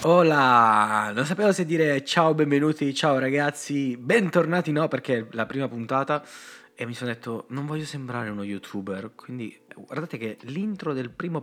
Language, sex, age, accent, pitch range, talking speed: Italian, male, 20-39, native, 115-145 Hz, 165 wpm